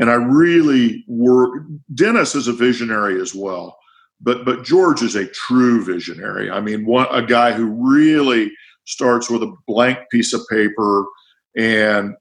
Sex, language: male, English